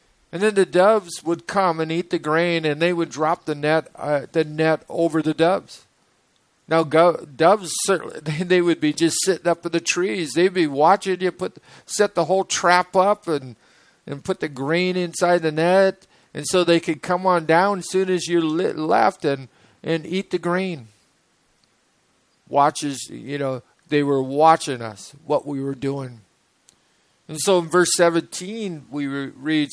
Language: English